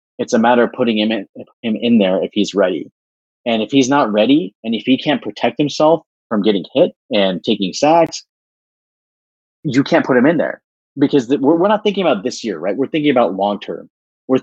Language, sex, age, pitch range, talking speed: English, male, 30-49, 95-130 Hz, 210 wpm